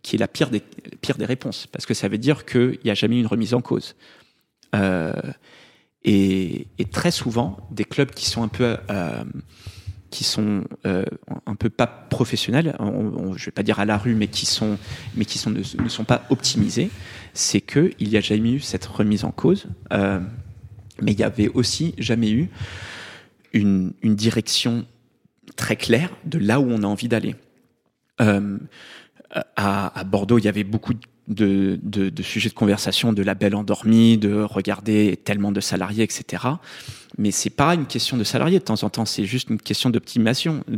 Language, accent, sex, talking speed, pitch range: French, French, male, 195 wpm, 105-125 Hz